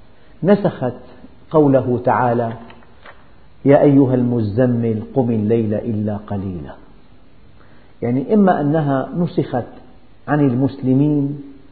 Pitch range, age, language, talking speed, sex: 120-150 Hz, 50-69, Arabic, 80 wpm, male